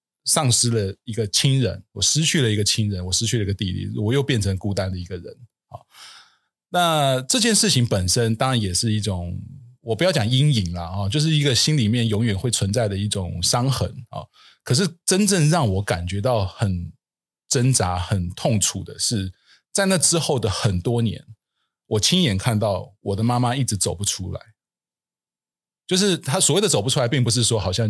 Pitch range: 100-130 Hz